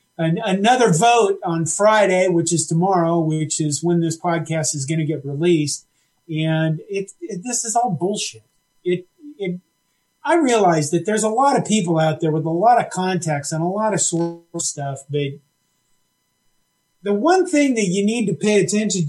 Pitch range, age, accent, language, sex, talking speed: 160-215 Hz, 40-59, American, English, male, 180 wpm